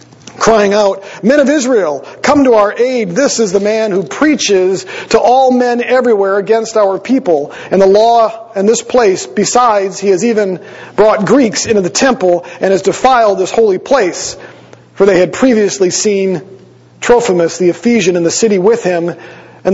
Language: English